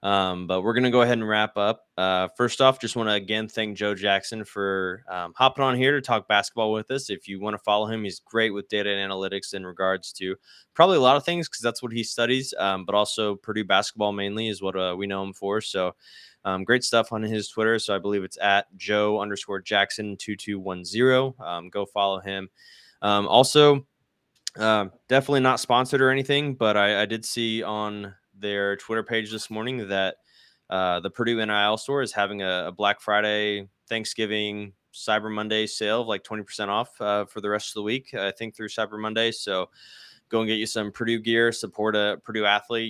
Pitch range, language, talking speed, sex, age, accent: 100-115 Hz, English, 215 wpm, male, 20-39, American